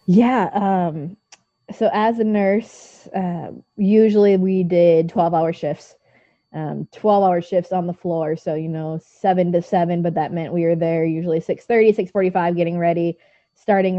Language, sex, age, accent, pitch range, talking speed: English, female, 20-39, American, 165-190 Hz, 165 wpm